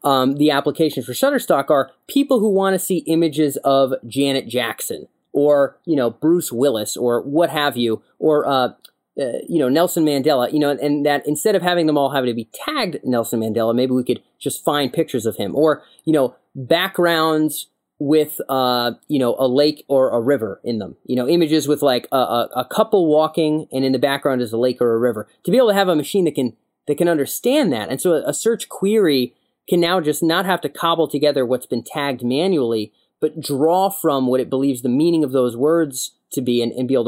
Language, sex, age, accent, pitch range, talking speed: English, male, 30-49, American, 125-155 Hz, 220 wpm